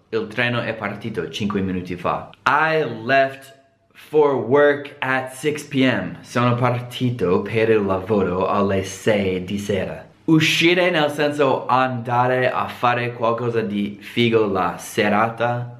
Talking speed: 125 wpm